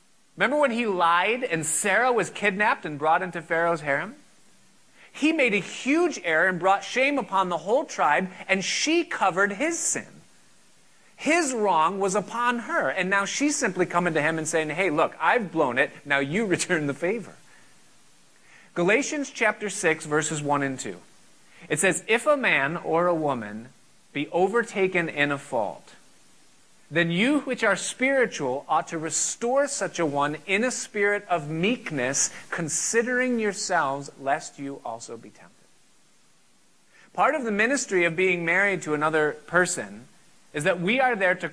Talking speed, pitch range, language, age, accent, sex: 165 wpm, 155-210 Hz, English, 30-49, American, male